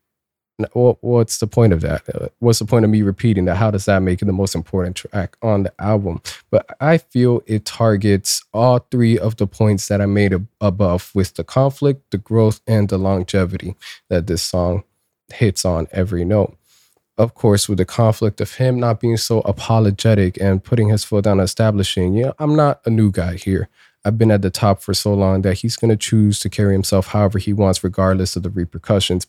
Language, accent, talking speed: English, American, 215 wpm